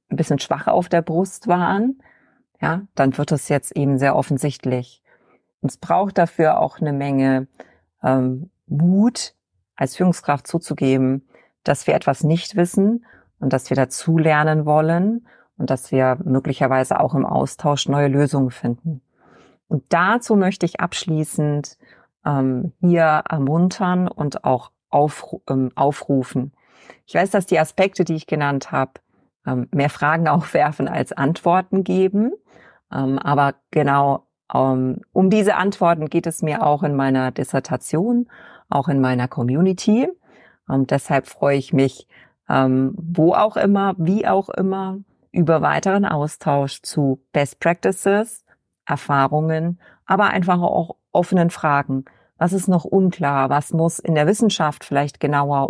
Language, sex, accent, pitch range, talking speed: German, female, German, 135-180 Hz, 135 wpm